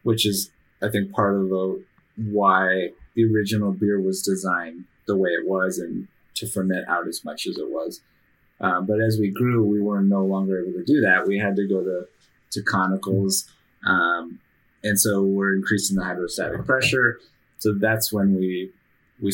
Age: 30-49